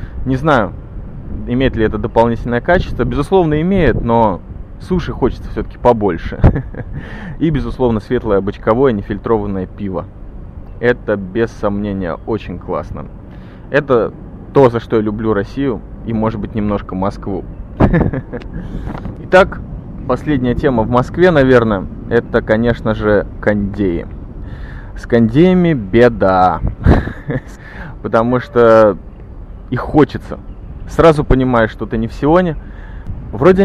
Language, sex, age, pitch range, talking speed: Russian, male, 20-39, 105-130 Hz, 110 wpm